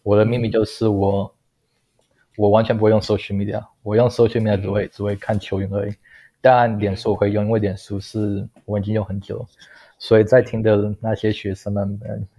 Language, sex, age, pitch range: Chinese, male, 20-39, 100-110 Hz